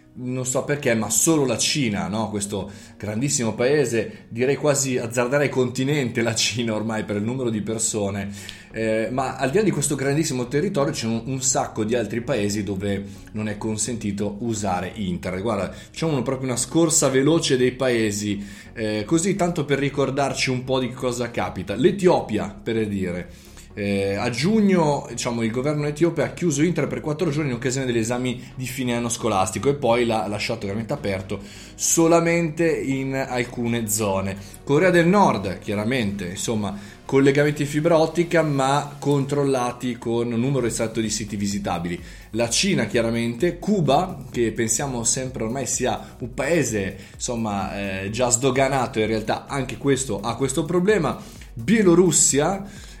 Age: 20-39